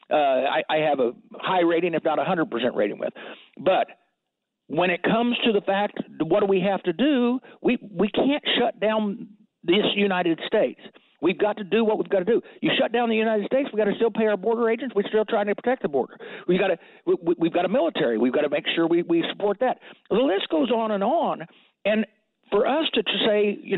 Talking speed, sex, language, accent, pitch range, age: 235 wpm, male, English, American, 165-230 Hz, 60-79